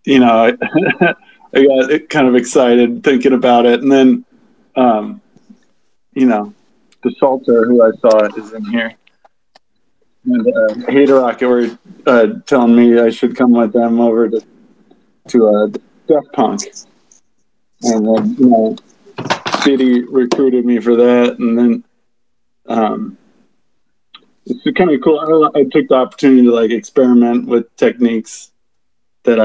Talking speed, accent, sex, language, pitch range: 145 wpm, American, male, English, 115-140 Hz